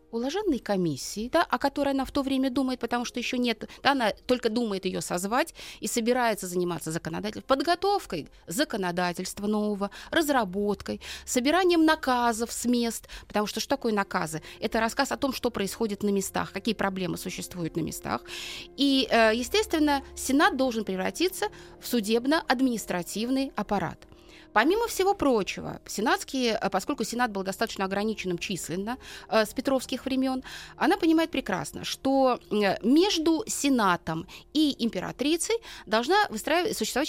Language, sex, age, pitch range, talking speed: Russian, female, 30-49, 190-270 Hz, 130 wpm